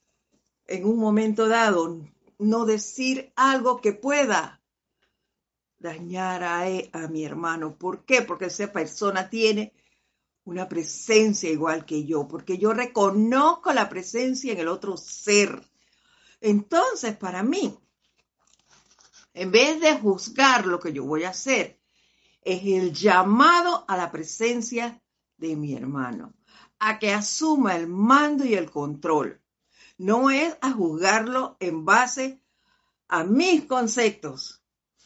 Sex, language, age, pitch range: female, Spanish, 50-69, 175-245 Hz